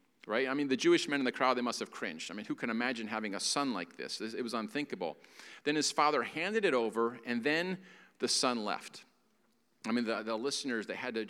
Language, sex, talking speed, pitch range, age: English, male, 245 wpm, 110-140 Hz, 40-59